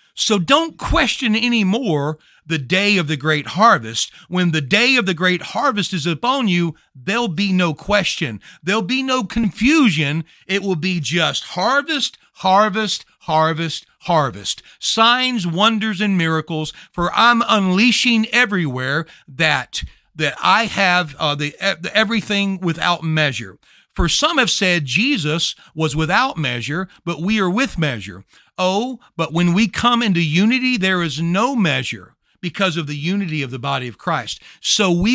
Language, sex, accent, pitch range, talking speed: English, male, American, 155-215 Hz, 150 wpm